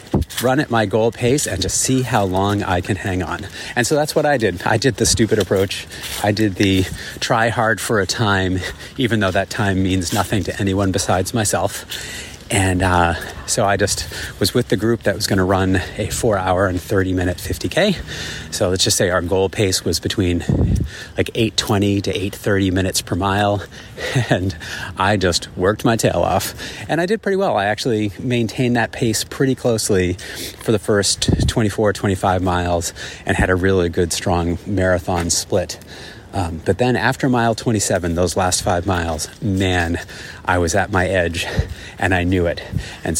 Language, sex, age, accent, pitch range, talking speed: English, male, 30-49, American, 90-110 Hz, 185 wpm